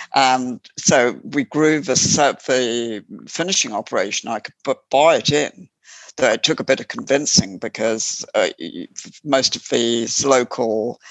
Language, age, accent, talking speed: English, 60-79, British, 155 wpm